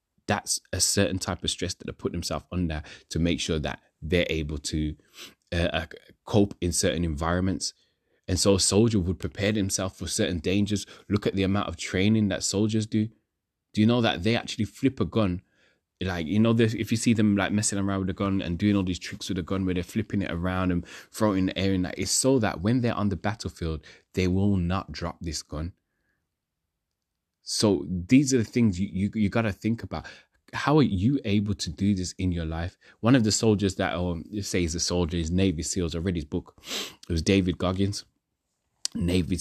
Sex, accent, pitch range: male, British, 85-105 Hz